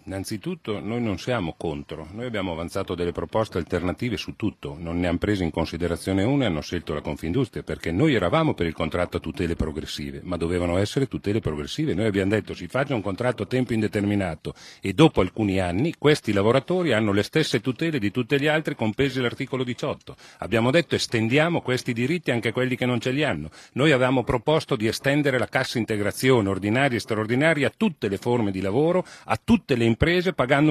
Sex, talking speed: male, 195 wpm